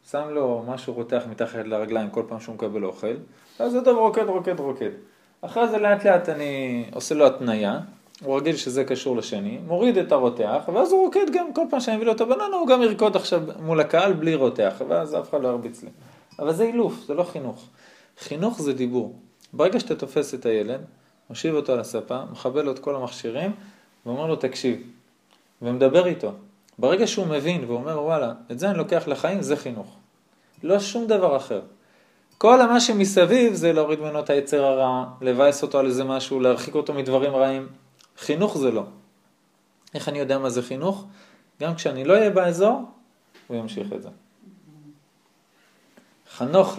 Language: Hebrew